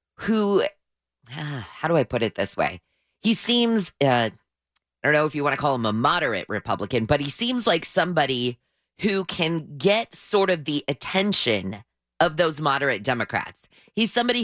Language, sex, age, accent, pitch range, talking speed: English, female, 30-49, American, 125-185 Hz, 175 wpm